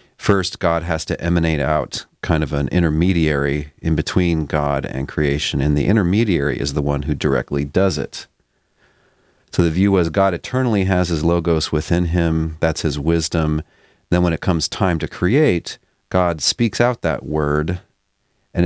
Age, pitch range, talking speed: 40-59, 75-90 Hz, 165 wpm